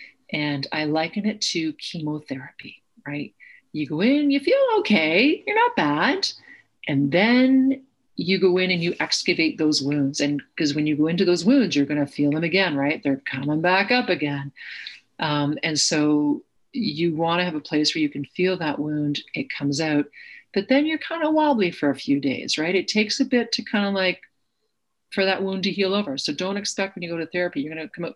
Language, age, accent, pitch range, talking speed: English, 40-59, American, 150-200 Hz, 210 wpm